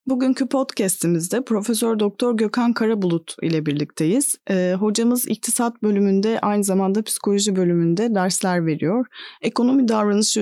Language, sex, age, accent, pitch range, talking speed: Turkish, female, 30-49, native, 190-245 Hz, 115 wpm